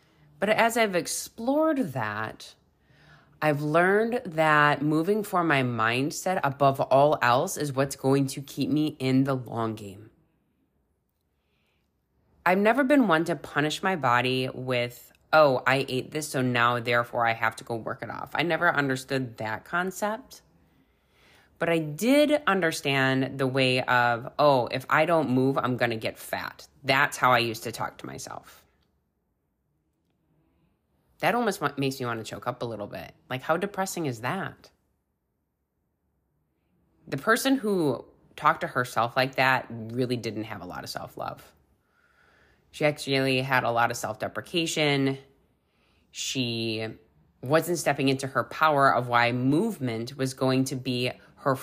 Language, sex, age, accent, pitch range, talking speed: English, female, 20-39, American, 120-155 Hz, 150 wpm